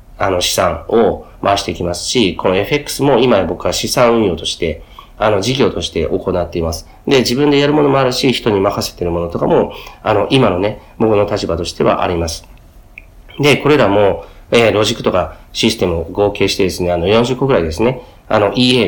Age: 40-59